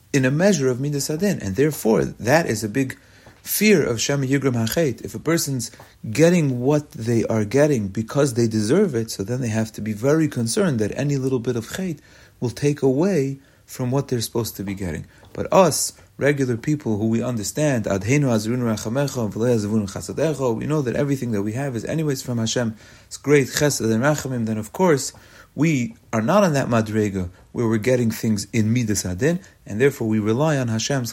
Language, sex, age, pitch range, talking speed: English, male, 40-59, 105-135 Hz, 185 wpm